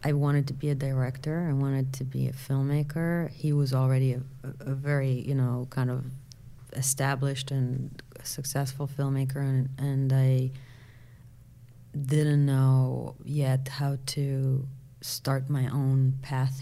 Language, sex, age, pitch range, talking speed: English, female, 30-49, 130-145 Hz, 135 wpm